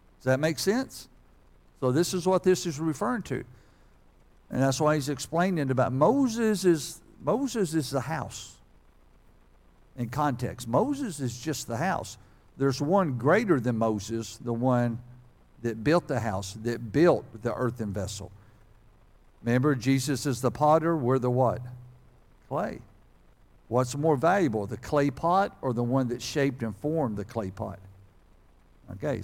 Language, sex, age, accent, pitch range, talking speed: English, male, 60-79, American, 120-165 Hz, 150 wpm